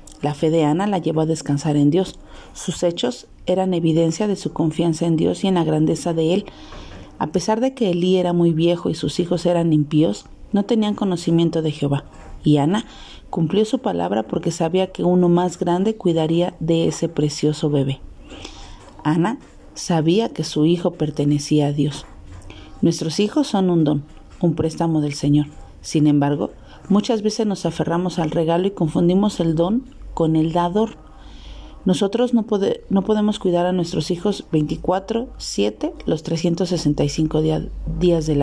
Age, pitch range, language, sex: 40-59, 155-185 Hz, Spanish, female